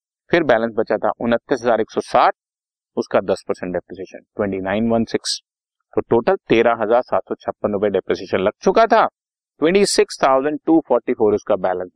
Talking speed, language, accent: 85 wpm, Hindi, native